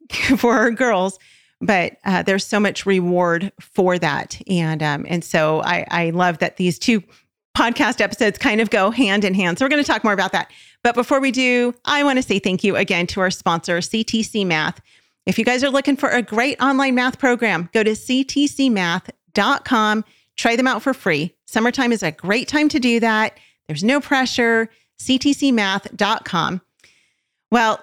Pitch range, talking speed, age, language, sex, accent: 185-240 Hz, 180 wpm, 40-59, English, female, American